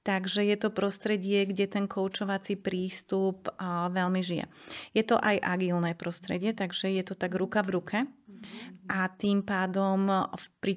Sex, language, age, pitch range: female, Slovak, 30-49, 175-200 Hz